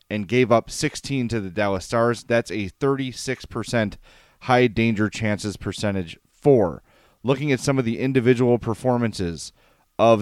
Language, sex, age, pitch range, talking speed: English, male, 30-49, 105-140 Hz, 140 wpm